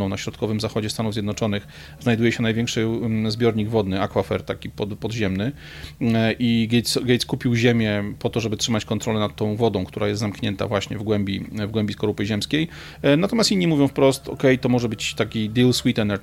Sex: male